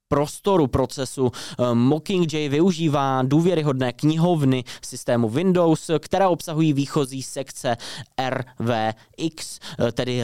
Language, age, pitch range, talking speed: Czech, 20-39, 125-160 Hz, 80 wpm